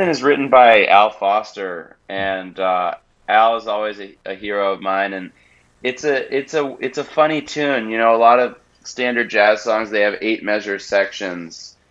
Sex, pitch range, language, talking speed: male, 100-120 Hz, English, 185 wpm